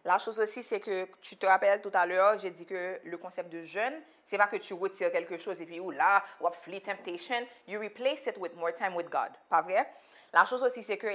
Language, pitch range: Polish, 180-240 Hz